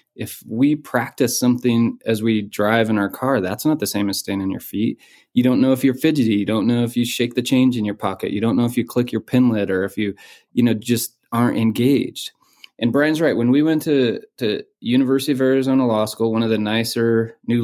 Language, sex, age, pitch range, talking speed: English, male, 20-39, 110-130 Hz, 240 wpm